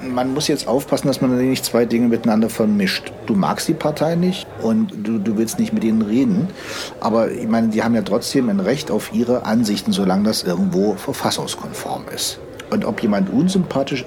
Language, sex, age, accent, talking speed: English, male, 60-79, German, 190 wpm